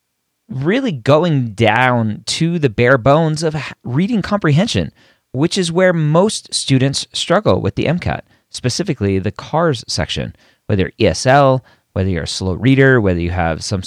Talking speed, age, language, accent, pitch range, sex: 150 wpm, 30-49, English, American, 105-145 Hz, male